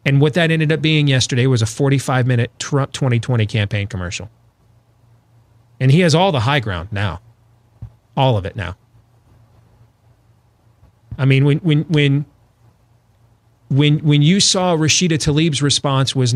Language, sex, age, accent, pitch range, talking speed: English, male, 40-59, American, 115-145 Hz, 140 wpm